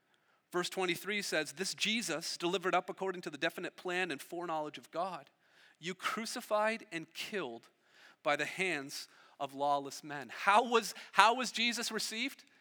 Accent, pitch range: American, 160-235 Hz